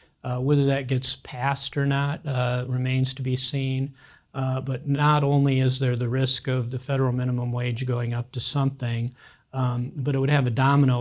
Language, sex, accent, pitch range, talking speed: English, male, American, 120-135 Hz, 195 wpm